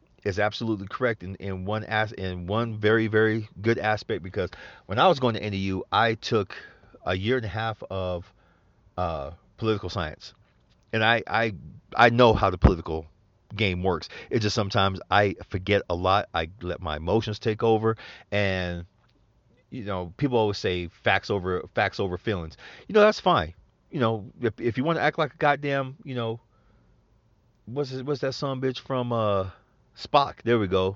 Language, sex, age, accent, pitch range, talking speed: English, male, 40-59, American, 95-130 Hz, 180 wpm